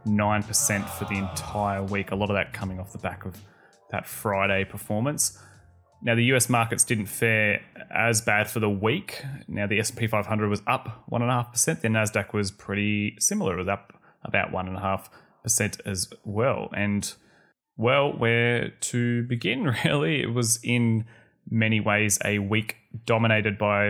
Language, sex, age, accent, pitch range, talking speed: English, male, 20-39, Australian, 100-115 Hz, 155 wpm